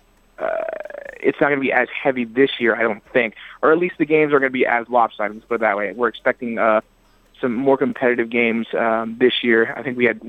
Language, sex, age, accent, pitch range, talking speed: English, male, 20-39, American, 115-140 Hz, 250 wpm